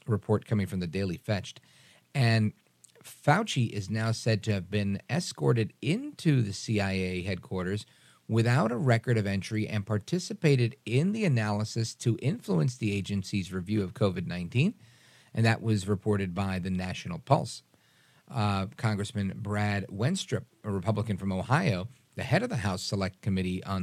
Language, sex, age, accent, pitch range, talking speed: English, male, 40-59, American, 100-130 Hz, 155 wpm